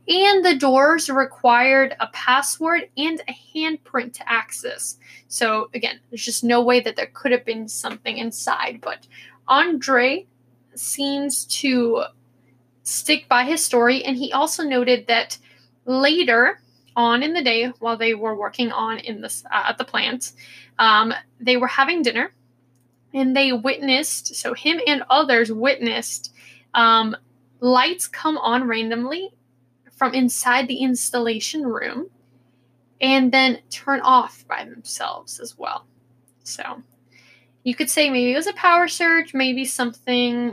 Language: English